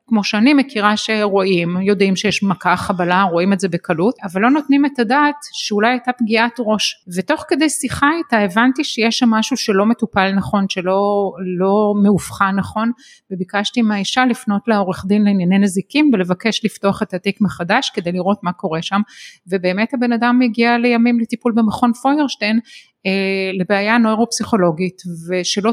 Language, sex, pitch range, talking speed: Hebrew, female, 195-245 Hz, 150 wpm